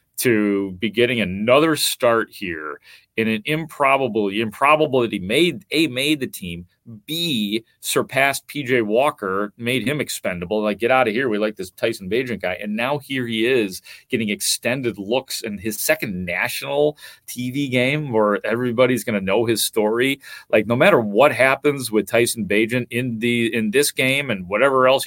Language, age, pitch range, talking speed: English, 30-49, 115-155 Hz, 170 wpm